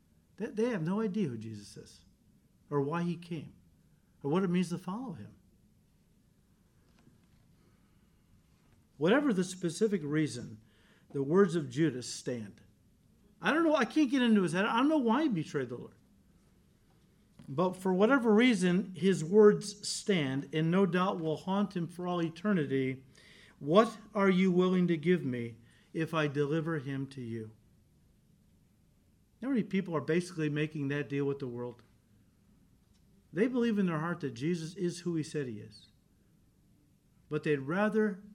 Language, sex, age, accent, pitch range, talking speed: English, male, 50-69, American, 140-190 Hz, 155 wpm